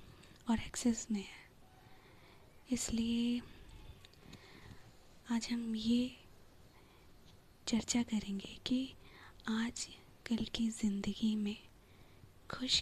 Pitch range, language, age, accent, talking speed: 205-230 Hz, Hindi, 20-39, native, 80 wpm